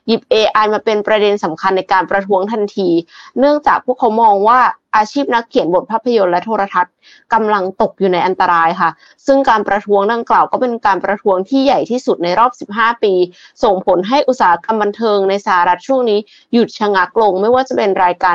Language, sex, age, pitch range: Thai, female, 20-39, 185-235 Hz